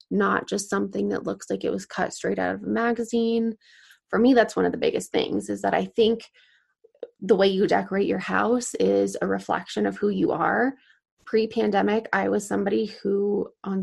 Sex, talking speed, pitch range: female, 195 wpm, 165-225 Hz